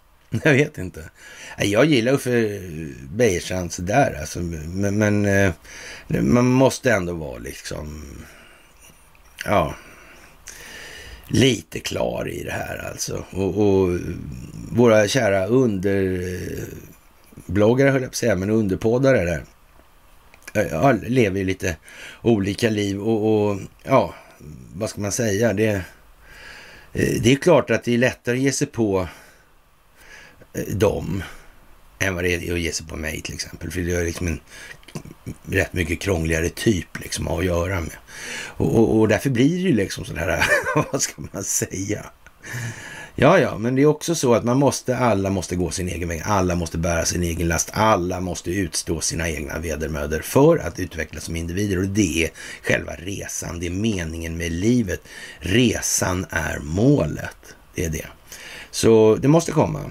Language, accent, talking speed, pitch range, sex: Swedish, native, 150 wpm, 85-115 Hz, male